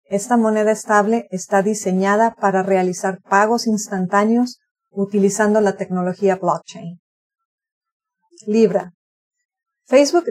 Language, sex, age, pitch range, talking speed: English, female, 40-59, 195-235 Hz, 85 wpm